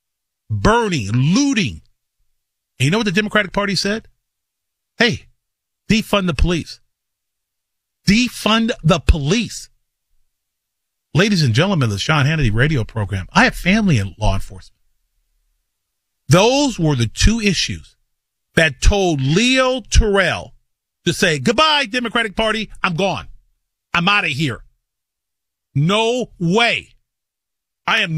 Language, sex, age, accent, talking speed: English, male, 40-59, American, 115 wpm